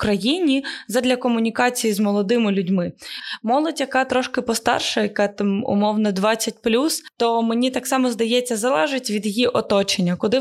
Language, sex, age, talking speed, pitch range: Ukrainian, female, 20-39, 140 wpm, 205-240 Hz